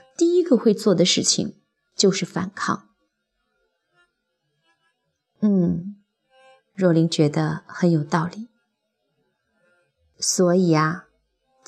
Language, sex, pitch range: Chinese, female, 175-245 Hz